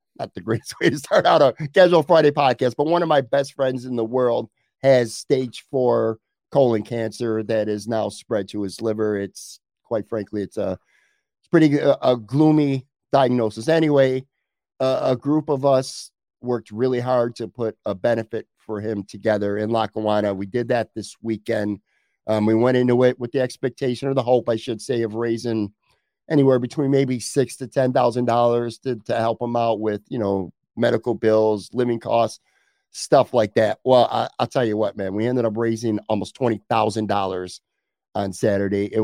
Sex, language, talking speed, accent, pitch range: male, English, 180 wpm, American, 110-135 Hz